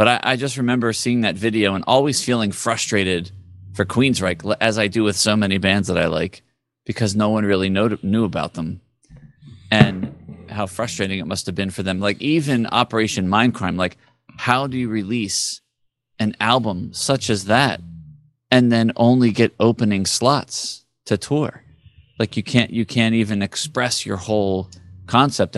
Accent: American